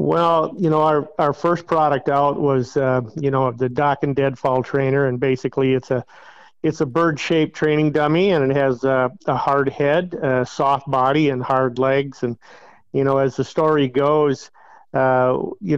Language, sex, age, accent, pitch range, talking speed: English, male, 50-69, American, 135-155 Hz, 185 wpm